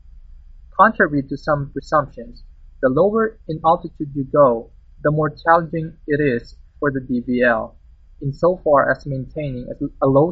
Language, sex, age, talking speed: English, male, 20-39, 135 wpm